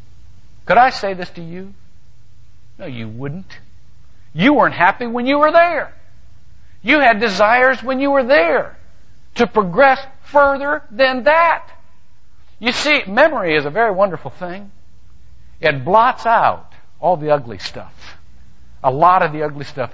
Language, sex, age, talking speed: English, male, 60-79, 145 wpm